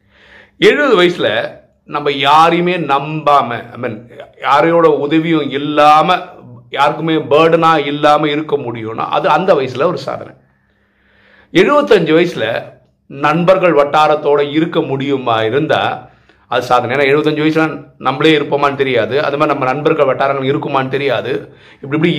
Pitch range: 120-160 Hz